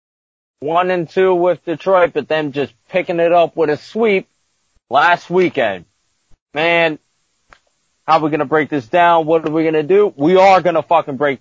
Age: 30-49